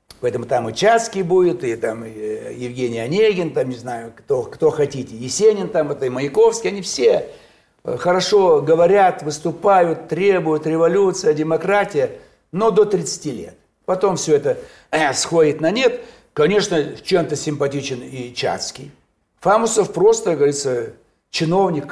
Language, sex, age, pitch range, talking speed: Russian, male, 60-79, 150-235 Hz, 130 wpm